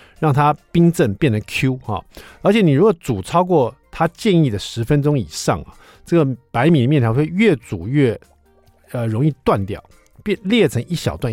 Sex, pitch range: male, 100-160 Hz